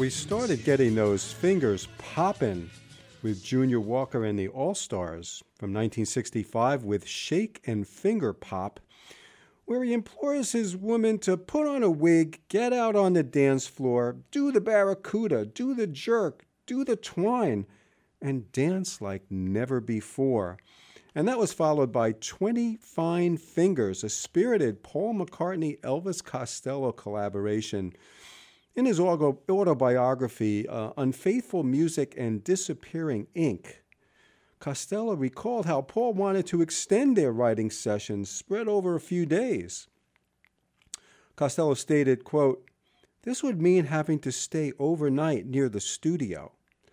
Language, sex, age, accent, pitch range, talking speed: English, male, 50-69, American, 120-190 Hz, 130 wpm